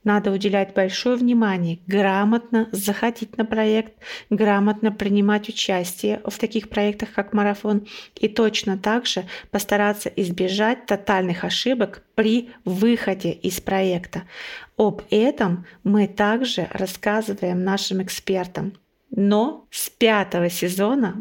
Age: 30-49